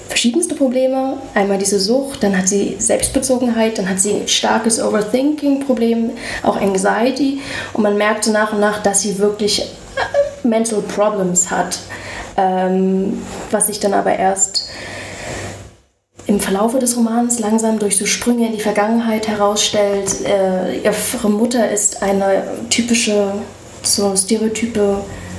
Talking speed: 130 wpm